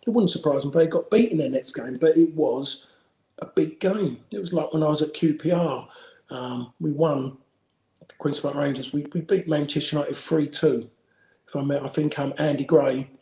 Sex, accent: male, British